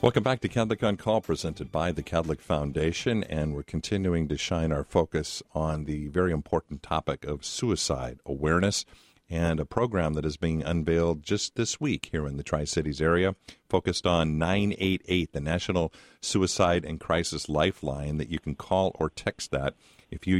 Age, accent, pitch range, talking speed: 50-69, American, 75-85 Hz, 175 wpm